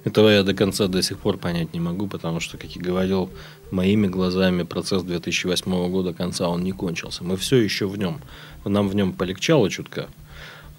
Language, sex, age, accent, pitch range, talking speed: Russian, male, 20-39, native, 90-105 Hz, 190 wpm